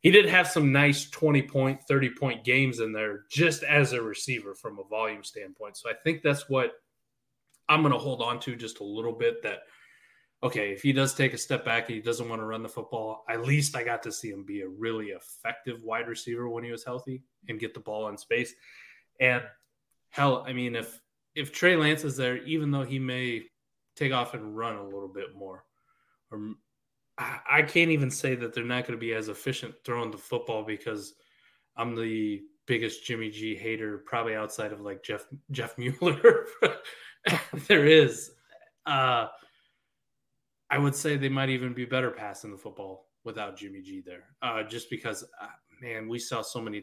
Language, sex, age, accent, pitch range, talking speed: English, male, 20-39, American, 110-140 Hz, 195 wpm